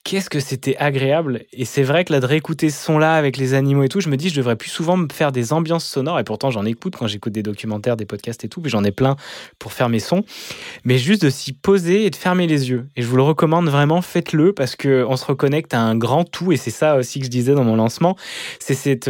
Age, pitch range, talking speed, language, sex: 20-39, 125-155 Hz, 275 wpm, French, male